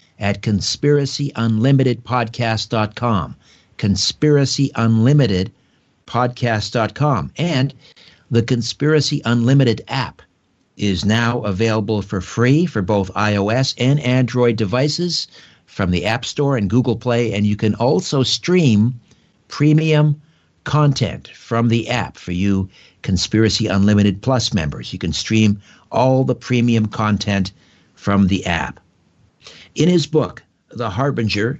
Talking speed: 110 wpm